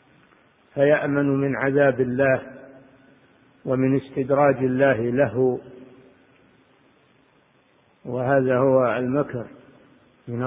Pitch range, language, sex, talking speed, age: 125-140 Hz, Arabic, male, 70 wpm, 50-69